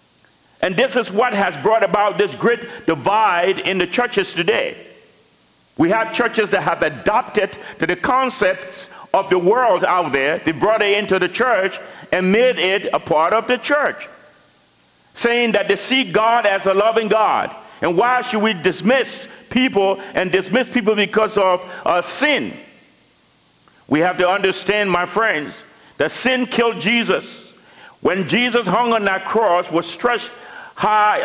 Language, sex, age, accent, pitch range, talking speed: English, male, 50-69, American, 180-235 Hz, 155 wpm